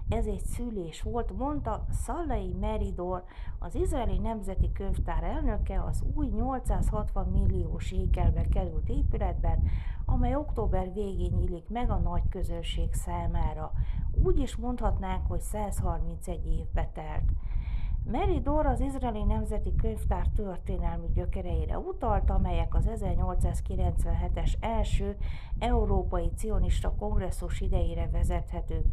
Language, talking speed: Hungarian, 110 wpm